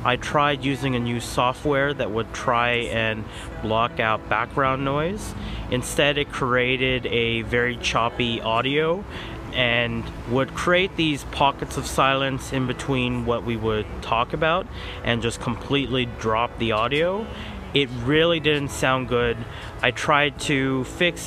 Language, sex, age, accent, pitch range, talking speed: English, male, 30-49, American, 120-150 Hz, 140 wpm